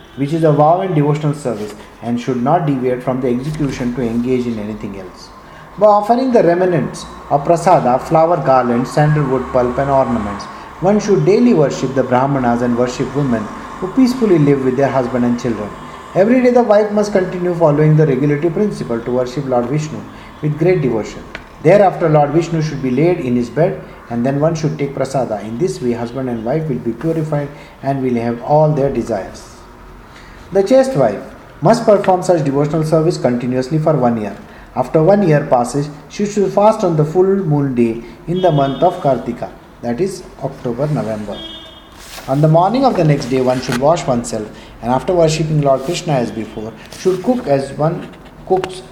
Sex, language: male, English